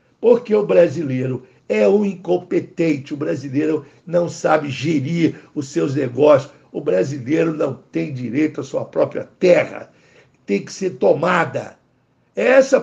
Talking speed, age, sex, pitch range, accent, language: 130 wpm, 60-79, male, 150-230 Hz, Brazilian, Portuguese